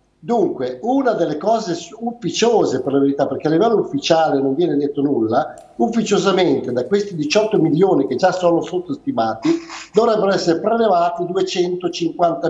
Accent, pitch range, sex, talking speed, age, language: native, 145-205 Hz, male, 140 wpm, 50-69, Italian